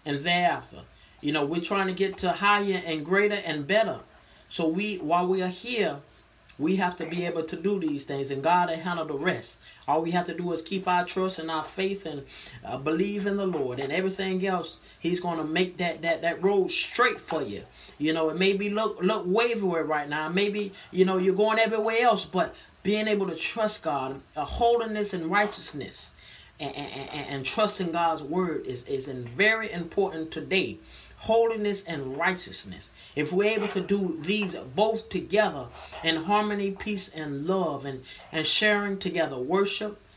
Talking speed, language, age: 190 wpm, English, 30-49